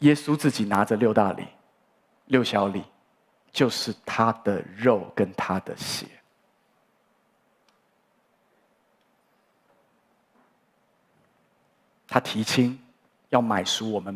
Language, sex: Chinese, male